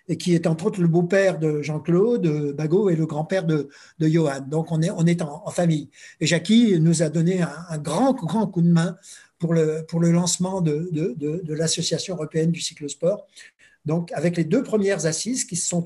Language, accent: French, French